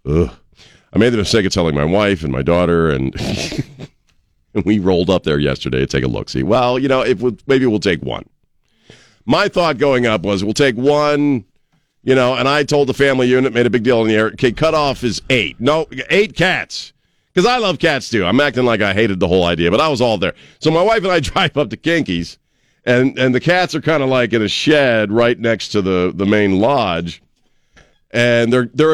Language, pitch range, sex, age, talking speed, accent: English, 90-130 Hz, male, 50-69, 230 wpm, American